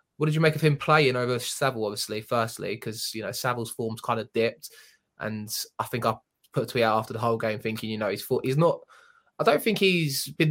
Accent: British